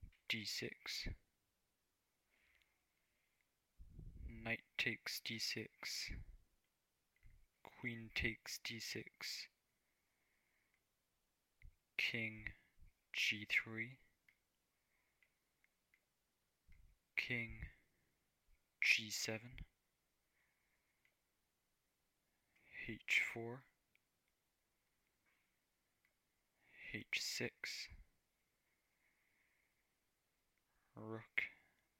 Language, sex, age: English, male, 20-39